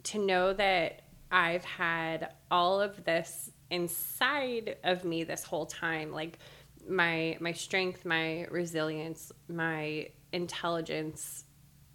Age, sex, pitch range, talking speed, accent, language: 20-39, female, 155-185 Hz, 110 wpm, American, English